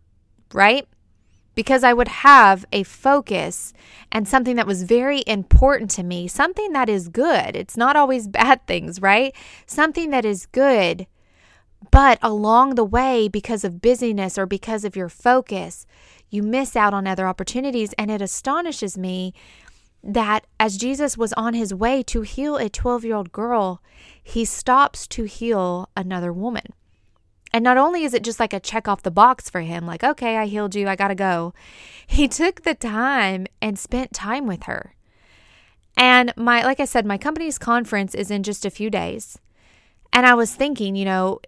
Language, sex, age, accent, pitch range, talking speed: English, female, 20-39, American, 185-245 Hz, 175 wpm